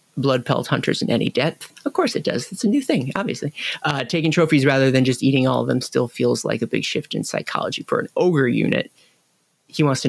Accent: American